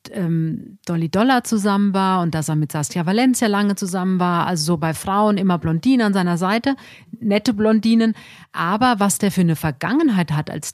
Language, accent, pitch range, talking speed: German, German, 165-205 Hz, 180 wpm